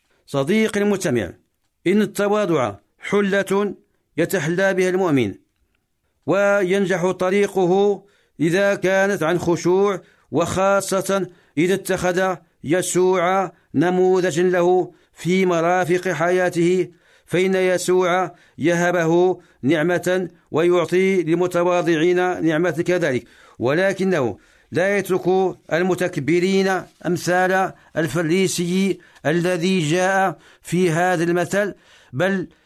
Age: 50-69